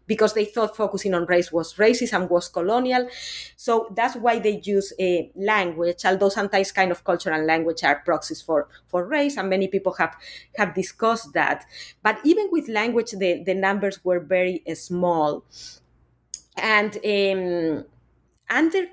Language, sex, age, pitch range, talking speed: English, female, 30-49, 180-230 Hz, 165 wpm